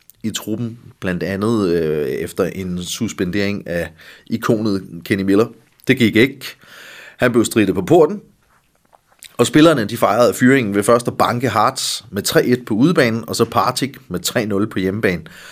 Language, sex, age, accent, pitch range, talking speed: Danish, male, 30-49, native, 105-140 Hz, 155 wpm